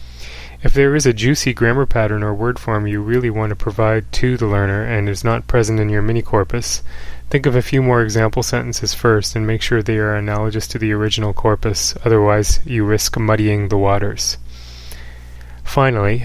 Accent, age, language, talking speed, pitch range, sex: American, 20-39, English, 190 wpm, 105-120 Hz, male